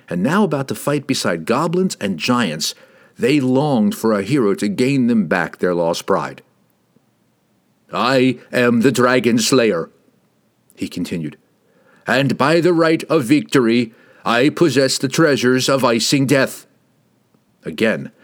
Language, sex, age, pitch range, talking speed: English, male, 50-69, 125-170 Hz, 140 wpm